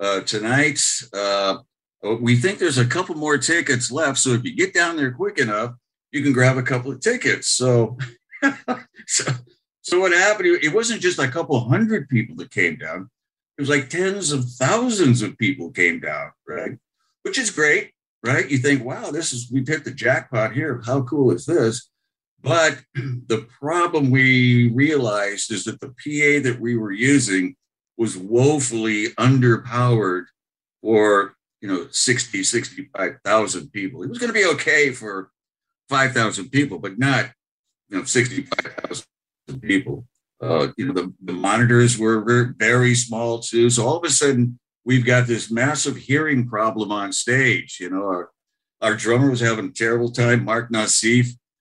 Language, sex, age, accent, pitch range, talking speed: English, male, 50-69, American, 115-145 Hz, 165 wpm